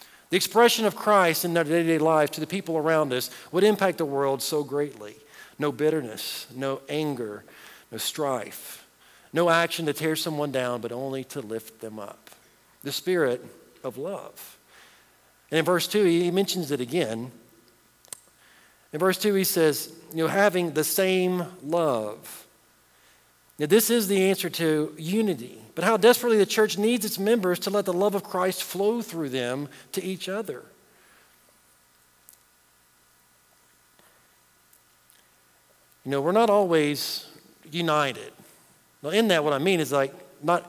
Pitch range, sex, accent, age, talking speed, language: 130-195 Hz, male, American, 50-69, 150 wpm, English